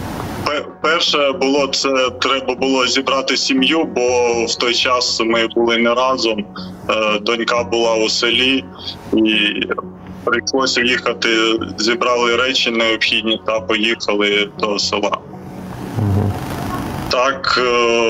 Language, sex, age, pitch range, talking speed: Ukrainian, male, 30-49, 115-135 Hz, 100 wpm